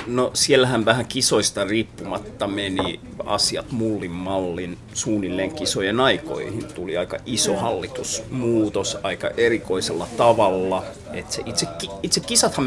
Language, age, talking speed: Finnish, 30-49, 110 wpm